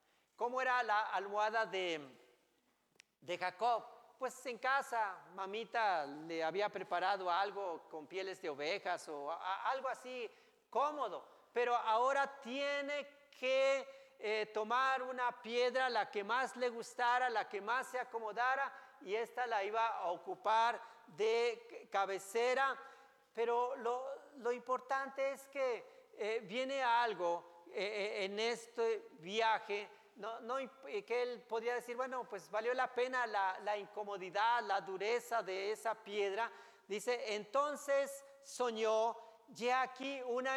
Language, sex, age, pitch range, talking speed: Spanish, male, 40-59, 215-265 Hz, 130 wpm